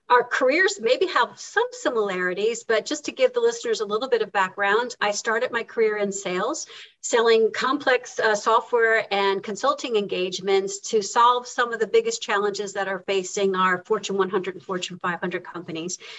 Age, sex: 50-69, female